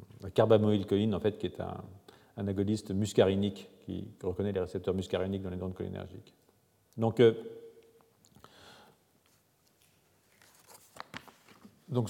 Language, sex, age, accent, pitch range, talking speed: French, male, 40-59, French, 95-130 Hz, 110 wpm